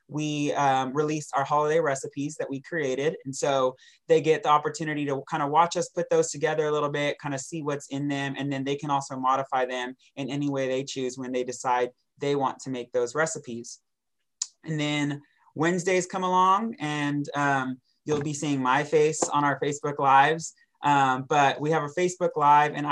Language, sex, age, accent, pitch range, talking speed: English, male, 20-39, American, 135-155 Hz, 200 wpm